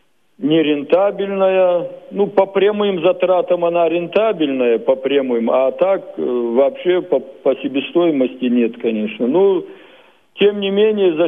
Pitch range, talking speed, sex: 145-195 Hz, 115 wpm, male